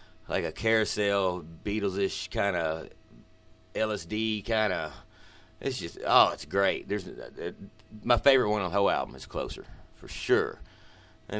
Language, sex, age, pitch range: English, male, 30-49, 90-110 Hz